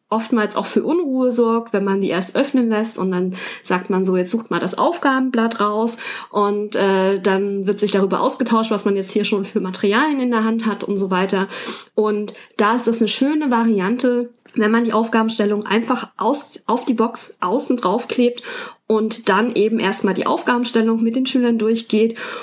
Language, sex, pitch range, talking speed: German, female, 205-255 Hz, 190 wpm